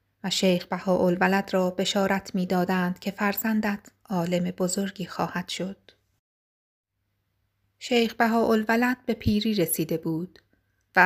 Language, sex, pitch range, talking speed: Persian, female, 170-200 Hz, 110 wpm